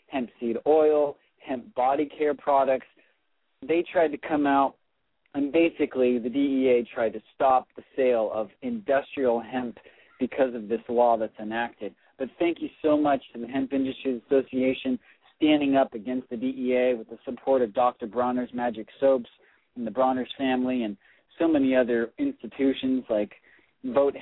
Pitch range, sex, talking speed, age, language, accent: 125-155 Hz, male, 160 wpm, 40-59, English, American